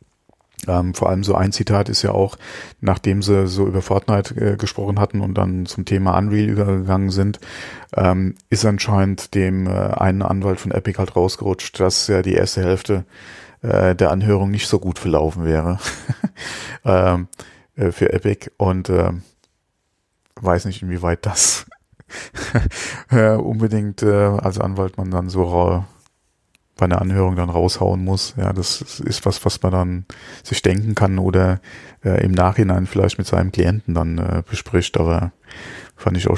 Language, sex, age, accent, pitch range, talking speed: German, male, 30-49, German, 95-110 Hz, 165 wpm